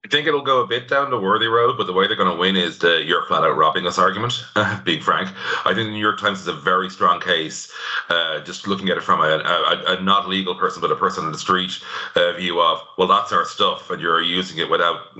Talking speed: 270 wpm